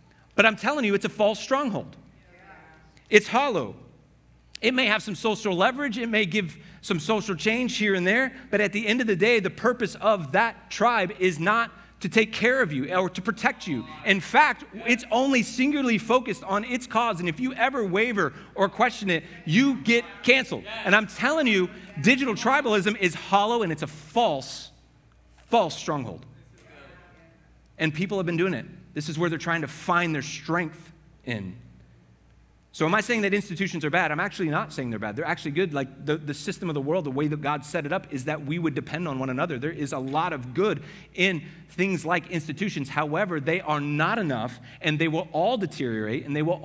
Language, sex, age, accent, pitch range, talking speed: English, male, 40-59, American, 155-220 Hz, 205 wpm